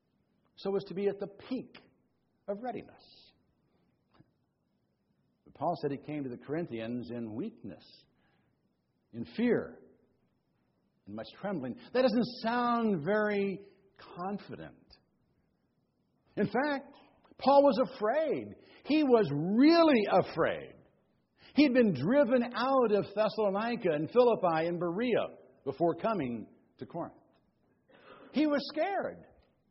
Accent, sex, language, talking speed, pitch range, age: American, male, English, 110 wpm, 165-260 Hz, 60-79